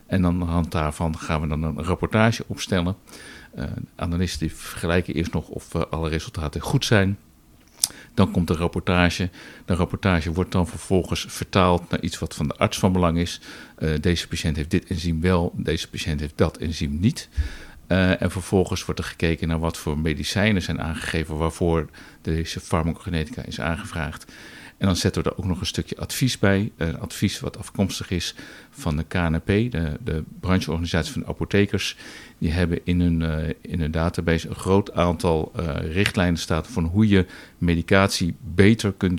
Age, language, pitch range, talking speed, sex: 50-69, English, 80-95 Hz, 170 wpm, male